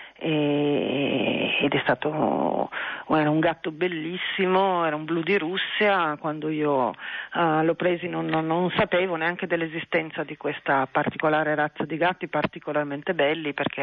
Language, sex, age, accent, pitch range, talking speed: Italian, female, 40-59, native, 150-175 Hz, 130 wpm